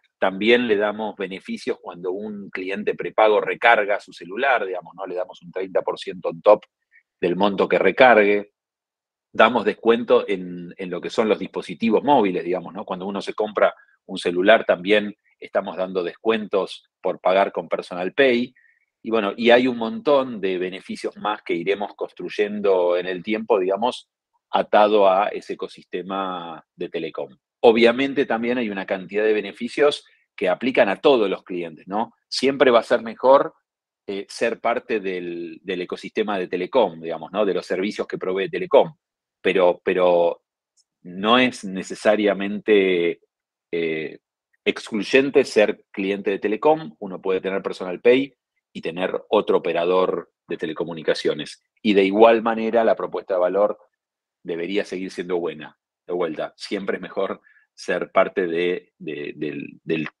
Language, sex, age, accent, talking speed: Spanish, male, 40-59, Argentinian, 150 wpm